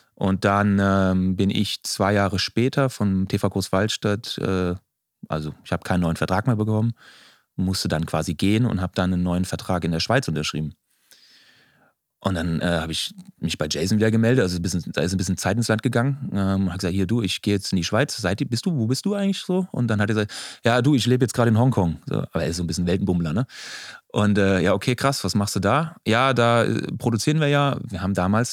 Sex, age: male, 30-49